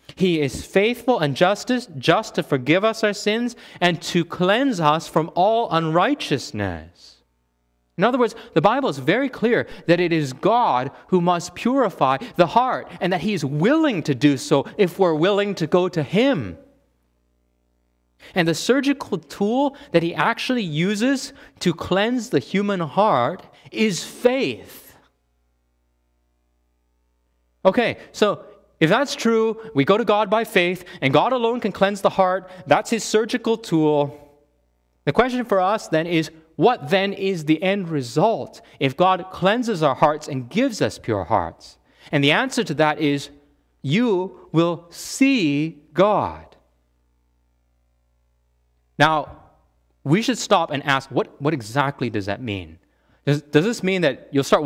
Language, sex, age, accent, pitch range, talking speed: English, male, 30-49, American, 135-210 Hz, 150 wpm